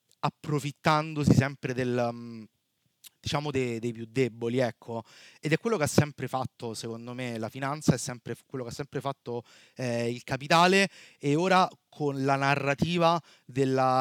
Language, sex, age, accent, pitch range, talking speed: Italian, male, 30-49, native, 130-165 Hz, 155 wpm